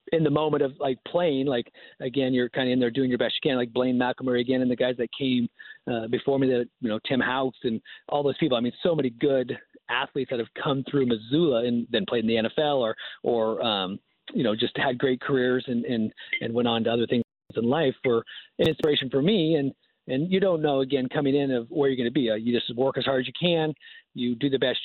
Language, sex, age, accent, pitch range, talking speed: English, male, 40-59, American, 120-145 Hz, 260 wpm